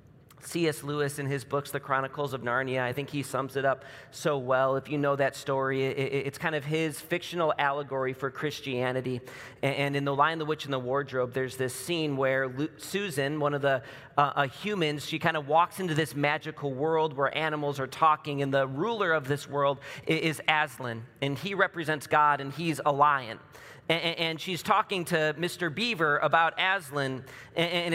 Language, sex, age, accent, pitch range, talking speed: English, male, 40-59, American, 135-170 Hz, 185 wpm